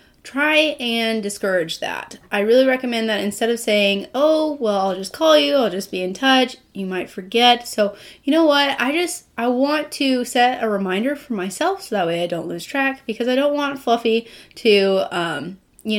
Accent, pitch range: American, 200-260 Hz